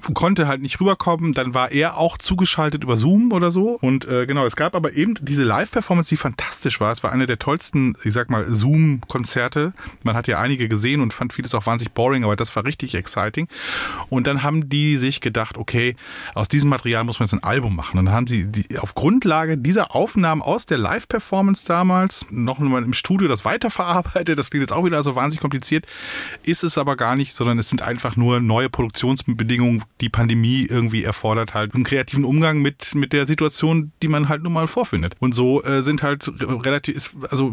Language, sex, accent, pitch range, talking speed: German, male, German, 125-160 Hz, 210 wpm